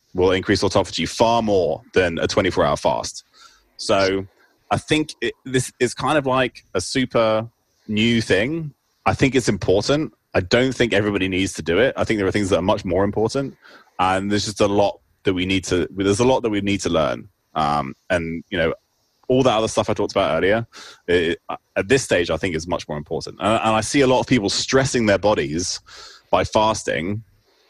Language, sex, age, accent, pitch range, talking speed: English, male, 20-39, British, 90-120 Hz, 210 wpm